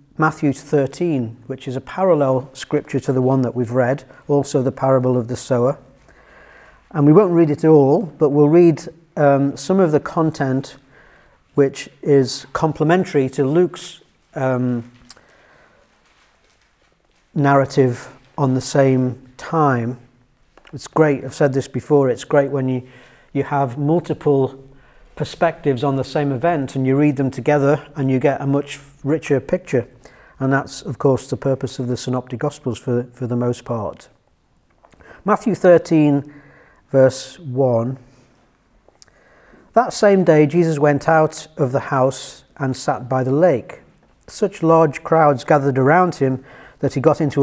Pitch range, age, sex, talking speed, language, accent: 130-150 Hz, 40-59, male, 150 wpm, English, British